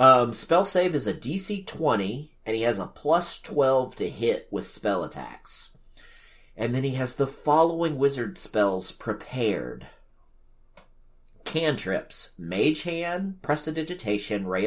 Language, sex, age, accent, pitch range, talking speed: English, male, 30-49, American, 95-155 Hz, 130 wpm